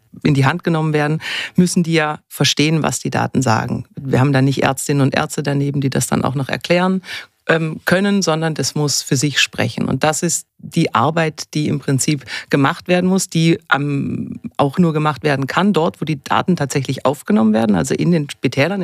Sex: female